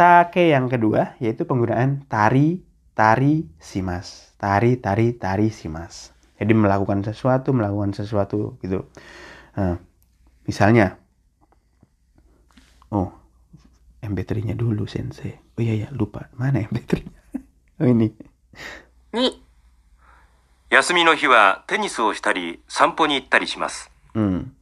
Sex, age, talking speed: male, 30-49, 65 wpm